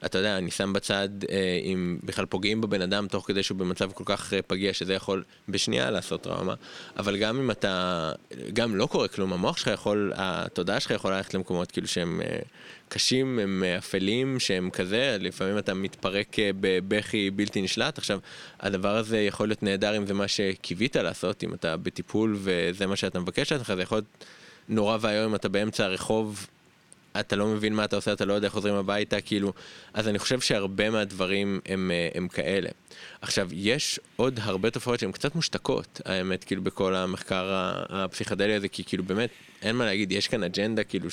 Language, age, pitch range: Hebrew, 20-39, 95-105 Hz